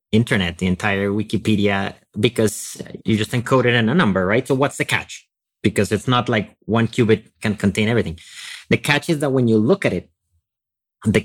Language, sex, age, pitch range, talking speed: English, male, 30-49, 100-125 Hz, 190 wpm